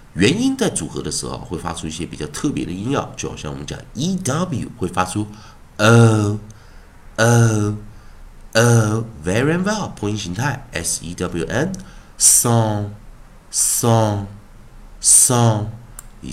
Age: 50-69